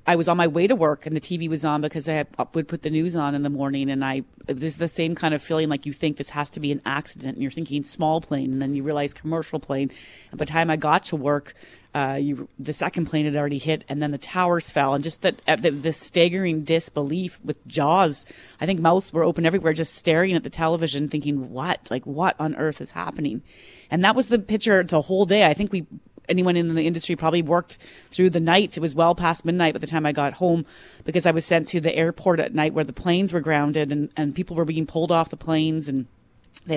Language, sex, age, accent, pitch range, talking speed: English, female, 30-49, American, 150-175 Hz, 250 wpm